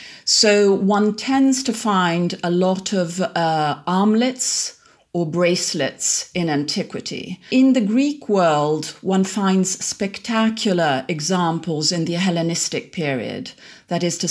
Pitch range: 160-205 Hz